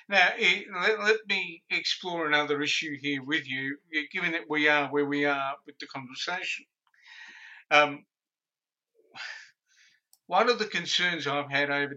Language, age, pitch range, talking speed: English, 50-69, 150-195 Hz, 135 wpm